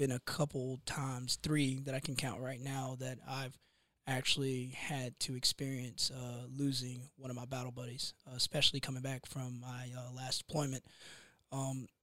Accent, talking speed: American, 165 wpm